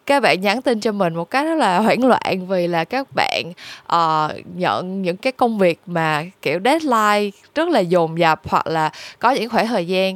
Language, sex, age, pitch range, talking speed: Vietnamese, female, 20-39, 170-220 Hz, 215 wpm